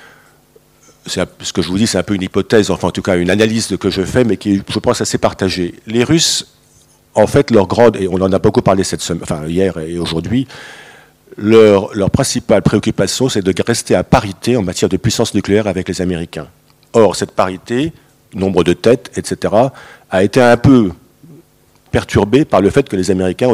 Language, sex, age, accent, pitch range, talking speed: French, male, 50-69, French, 95-115 Hz, 205 wpm